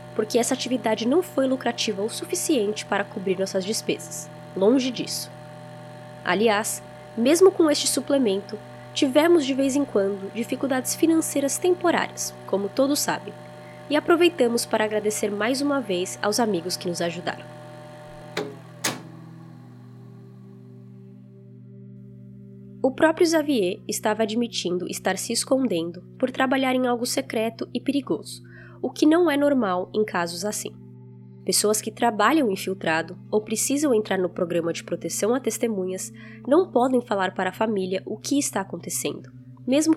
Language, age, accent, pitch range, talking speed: Portuguese, 10-29, Brazilian, 160-255 Hz, 135 wpm